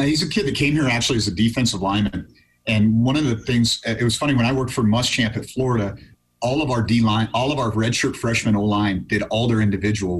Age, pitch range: 40-59, 100-115 Hz